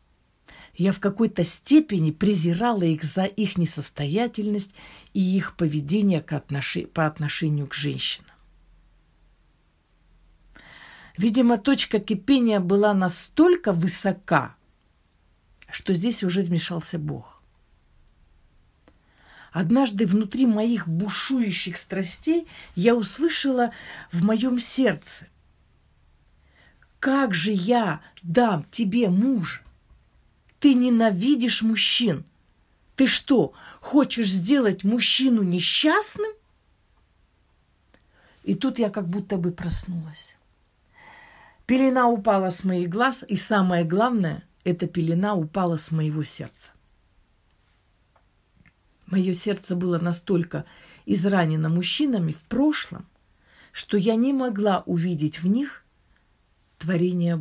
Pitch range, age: 155-225 Hz, 50-69